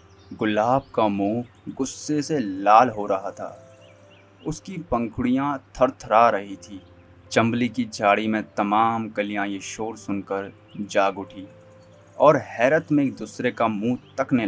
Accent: native